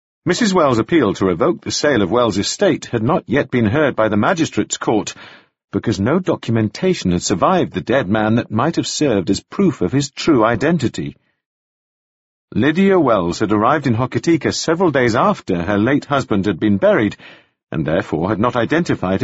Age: 50-69